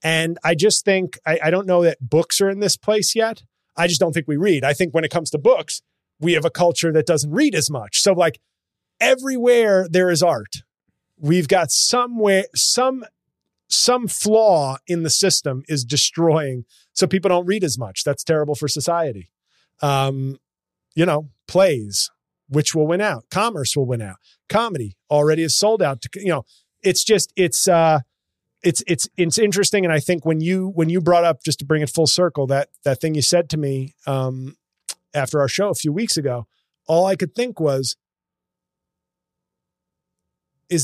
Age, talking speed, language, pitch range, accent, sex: 30-49, 190 wpm, English, 140-180 Hz, American, male